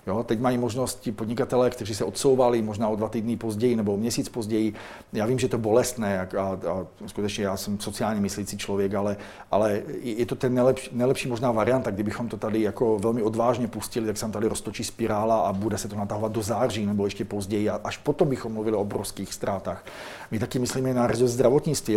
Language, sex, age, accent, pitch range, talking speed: Czech, male, 40-59, native, 105-120 Hz, 205 wpm